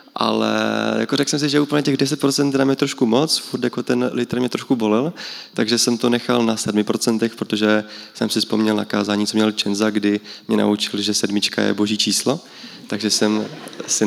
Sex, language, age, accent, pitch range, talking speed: male, Czech, 20-39, native, 105-120 Hz, 190 wpm